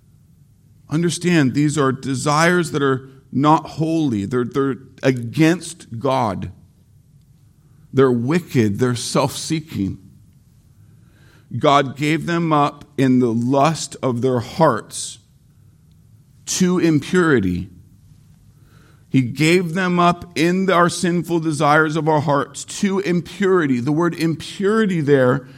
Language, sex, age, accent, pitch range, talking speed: English, male, 50-69, American, 130-165 Hz, 105 wpm